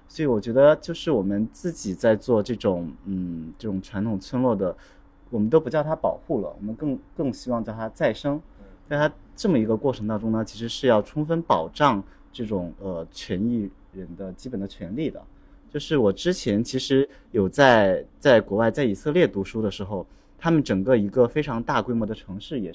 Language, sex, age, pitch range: Chinese, male, 30-49, 100-135 Hz